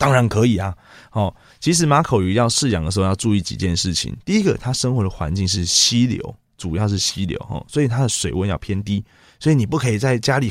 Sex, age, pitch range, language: male, 20-39, 95-125 Hz, Chinese